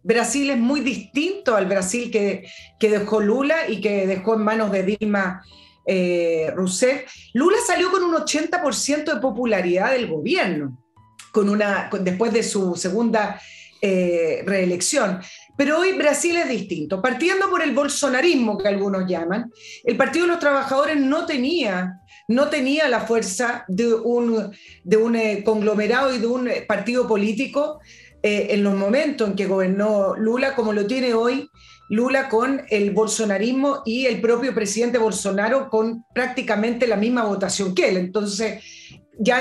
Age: 40-59